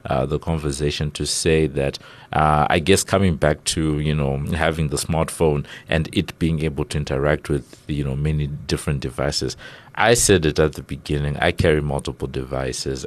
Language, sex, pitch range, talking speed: English, male, 70-80 Hz, 180 wpm